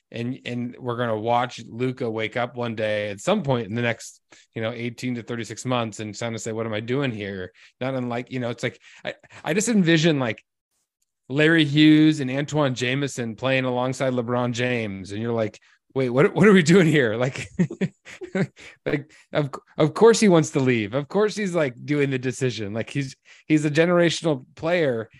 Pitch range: 115-145 Hz